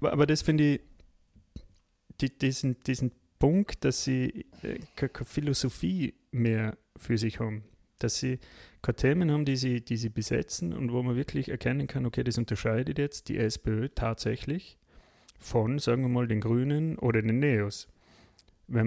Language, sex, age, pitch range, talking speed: German, male, 30-49, 110-130 Hz, 150 wpm